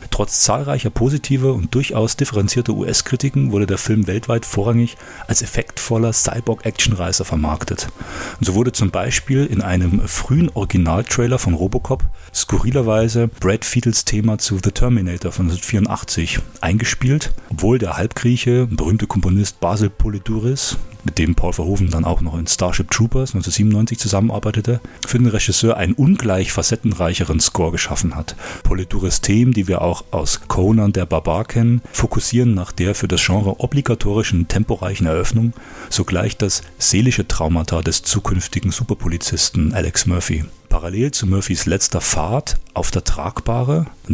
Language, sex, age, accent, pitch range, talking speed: German, male, 40-59, German, 90-115 Hz, 140 wpm